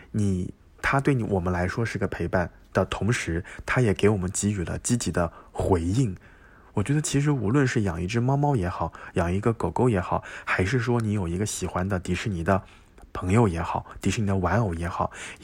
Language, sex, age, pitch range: Chinese, male, 20-39, 90-110 Hz